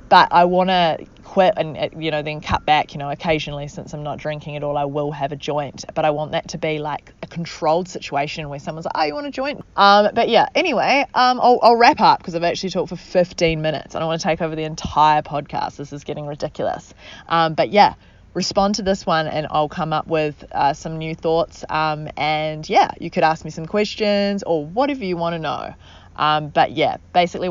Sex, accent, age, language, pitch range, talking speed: female, Australian, 20-39, English, 145-170 Hz, 235 wpm